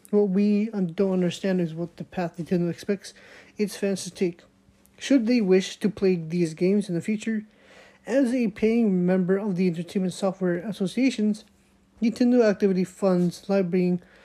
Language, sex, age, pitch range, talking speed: English, male, 30-49, 180-215 Hz, 155 wpm